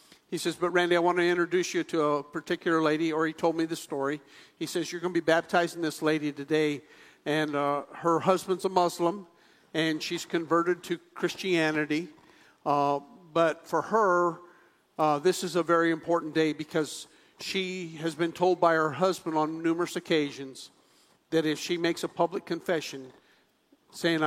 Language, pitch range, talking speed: English, 145-170 Hz, 175 wpm